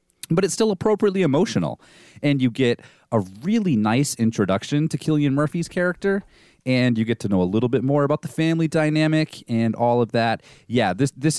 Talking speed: 190 wpm